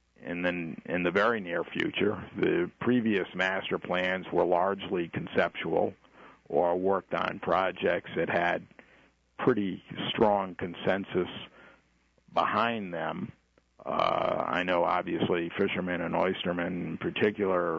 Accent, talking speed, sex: American, 115 wpm, male